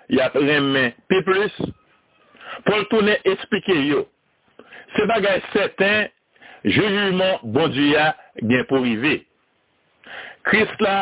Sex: male